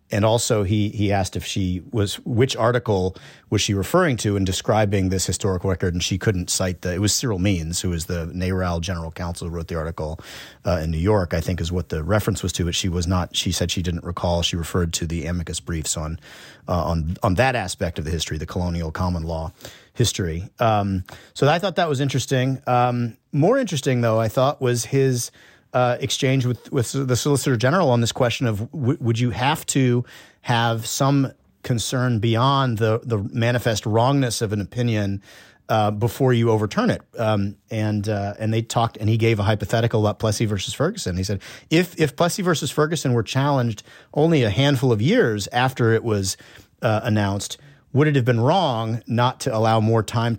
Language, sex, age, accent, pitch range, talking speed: English, male, 30-49, American, 95-125 Hz, 200 wpm